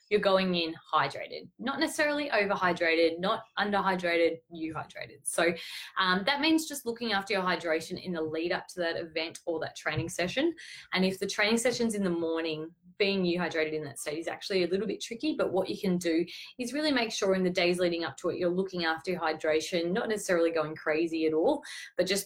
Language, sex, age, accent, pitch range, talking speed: English, female, 20-39, Australian, 160-200 Hz, 215 wpm